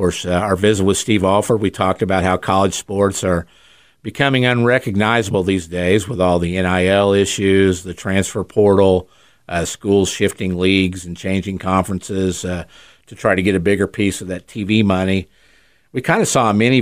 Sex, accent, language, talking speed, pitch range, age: male, American, English, 180 wpm, 90-110 Hz, 50-69